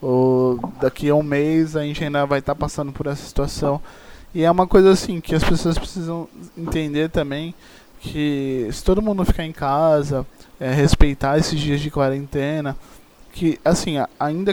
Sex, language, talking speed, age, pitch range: male, Portuguese, 180 wpm, 20-39, 145-175 Hz